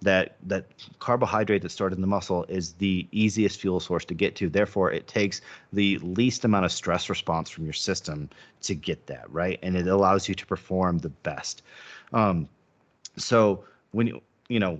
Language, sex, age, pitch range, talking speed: English, male, 30-49, 90-110 Hz, 185 wpm